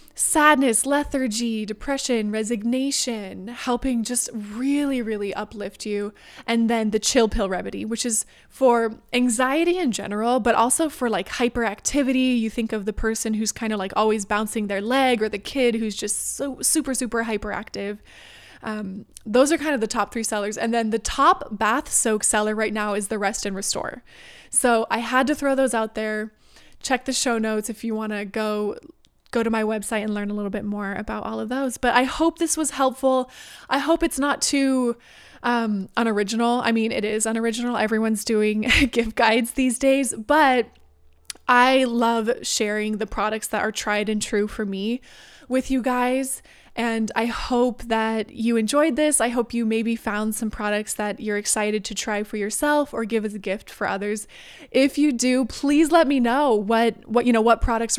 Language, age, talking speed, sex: English, 20-39, 190 wpm, female